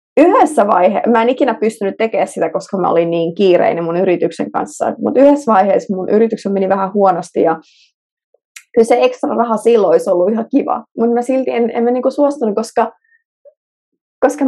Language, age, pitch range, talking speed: Finnish, 20-39, 195-255 Hz, 180 wpm